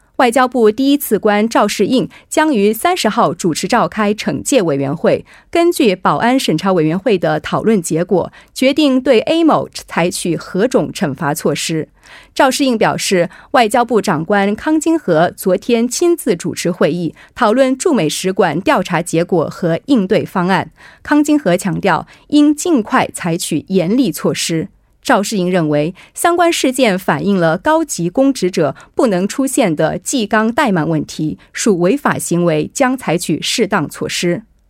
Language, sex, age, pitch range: Korean, female, 30-49, 175-270 Hz